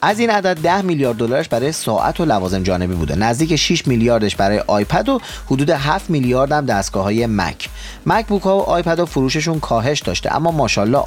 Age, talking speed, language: 30-49, 185 wpm, Persian